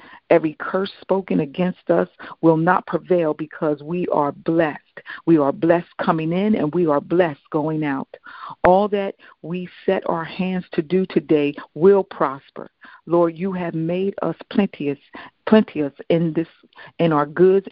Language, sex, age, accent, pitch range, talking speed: English, female, 50-69, American, 155-190 Hz, 155 wpm